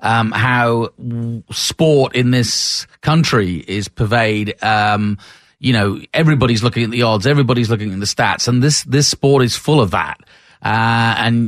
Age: 40-59